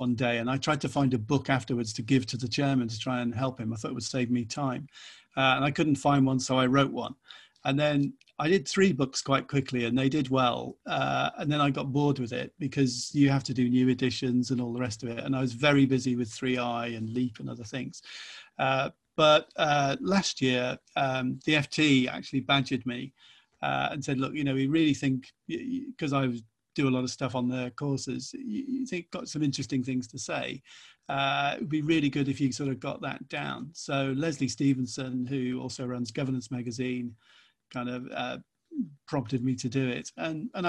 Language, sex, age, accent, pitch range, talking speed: English, male, 40-59, British, 125-145 Hz, 225 wpm